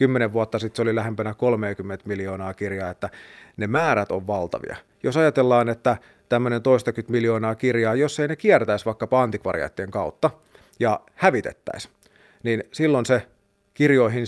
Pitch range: 110-135 Hz